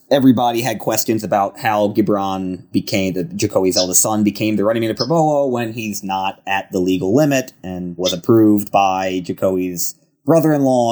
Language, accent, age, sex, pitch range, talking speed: English, American, 30-49, male, 100-145 Hz, 165 wpm